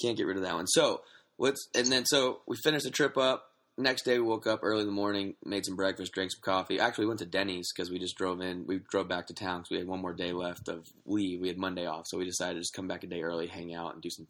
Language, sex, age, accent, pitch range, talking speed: English, male, 20-39, American, 95-115 Hz, 310 wpm